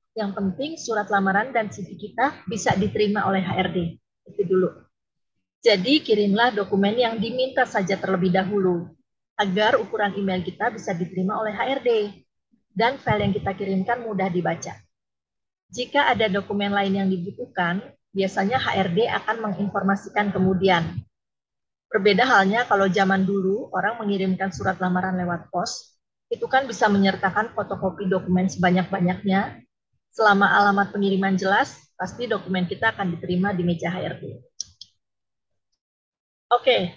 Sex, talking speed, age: female, 125 wpm, 30-49